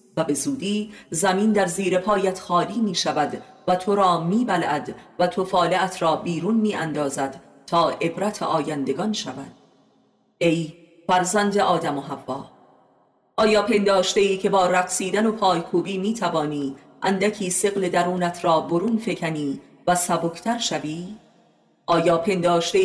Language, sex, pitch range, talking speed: Persian, female, 165-200 Hz, 135 wpm